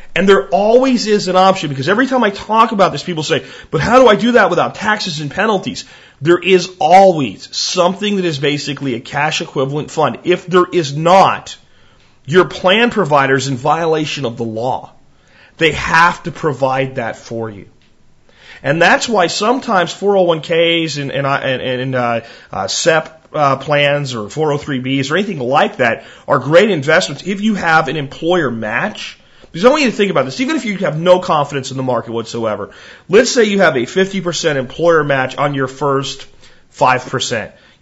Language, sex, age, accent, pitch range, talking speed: English, male, 40-59, American, 130-180 Hz, 180 wpm